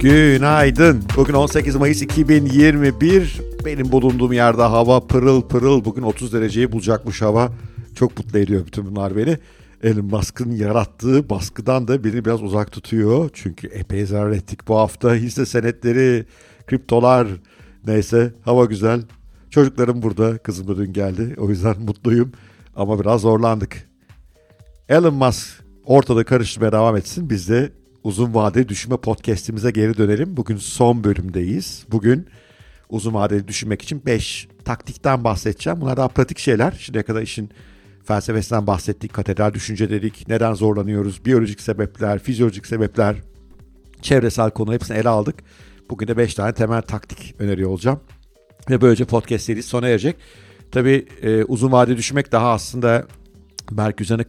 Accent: native